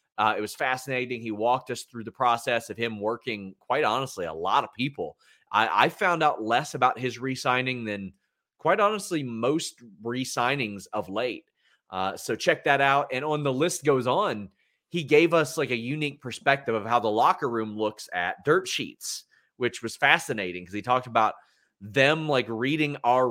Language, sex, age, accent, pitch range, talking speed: English, male, 30-49, American, 110-145 Hz, 185 wpm